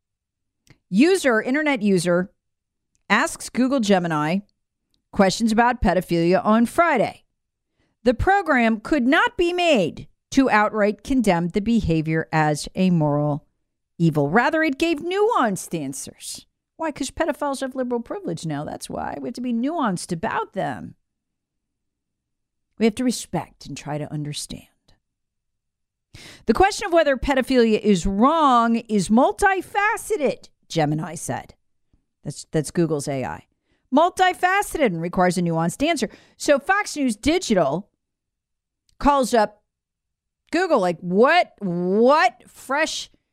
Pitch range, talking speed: 170-280 Hz, 120 wpm